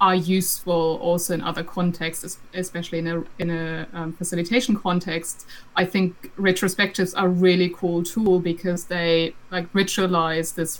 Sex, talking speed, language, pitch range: female, 150 wpm, English, 165-195 Hz